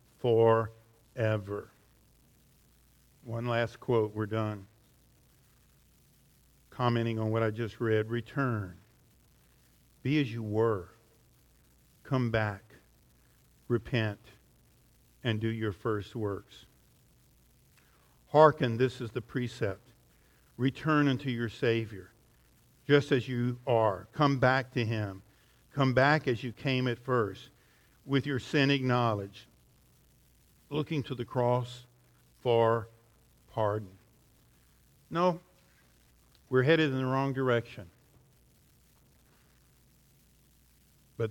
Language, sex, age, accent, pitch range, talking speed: English, male, 50-69, American, 105-125 Hz, 95 wpm